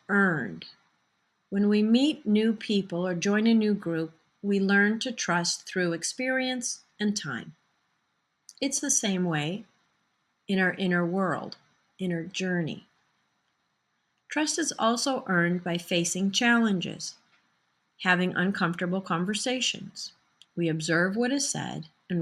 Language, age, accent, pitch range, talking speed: English, 40-59, American, 175-235 Hz, 120 wpm